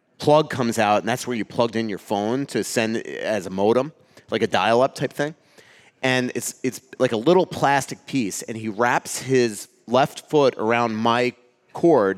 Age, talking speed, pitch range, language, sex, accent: 30-49, 185 wpm, 105-130 Hz, English, male, American